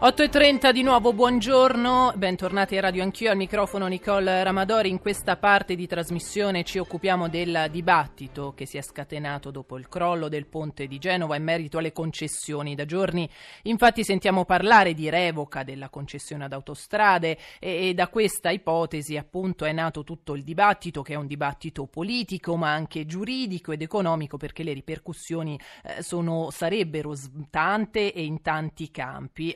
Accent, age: native, 30-49